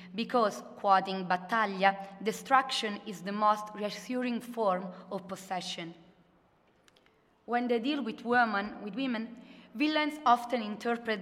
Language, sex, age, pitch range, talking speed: Italian, female, 30-49, 195-245 Hz, 100 wpm